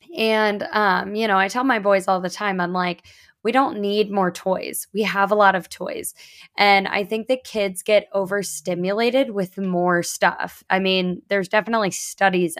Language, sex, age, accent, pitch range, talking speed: English, female, 20-39, American, 180-210 Hz, 185 wpm